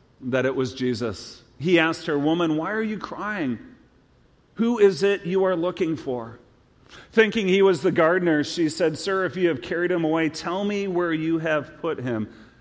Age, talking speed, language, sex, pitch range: 40-59, 190 wpm, English, male, 115-140 Hz